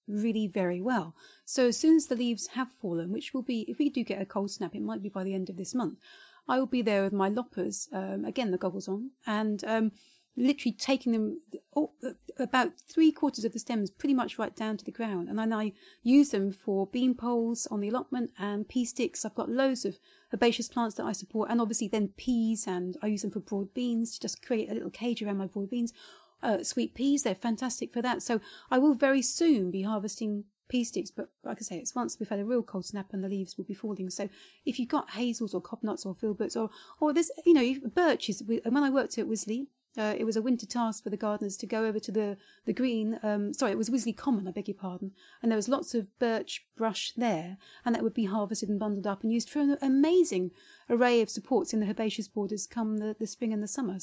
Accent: British